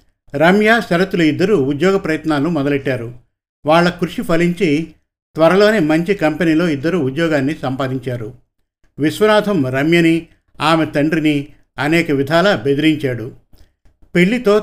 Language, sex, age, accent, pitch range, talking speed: Telugu, male, 50-69, native, 140-175 Hz, 95 wpm